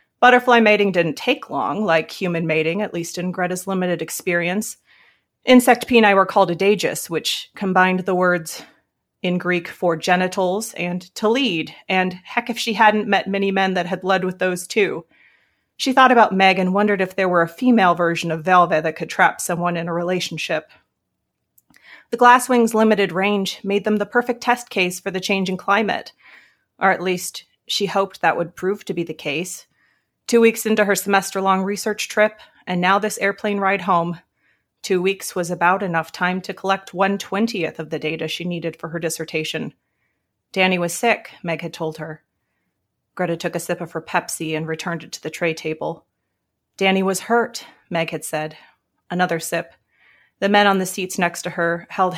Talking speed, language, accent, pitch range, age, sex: 185 wpm, English, American, 170-200 Hz, 30-49, female